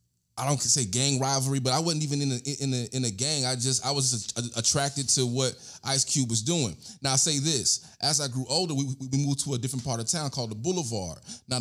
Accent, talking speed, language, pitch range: American, 255 wpm, English, 120-145 Hz